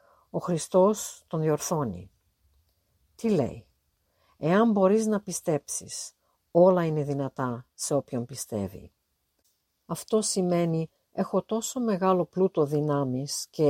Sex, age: female, 50-69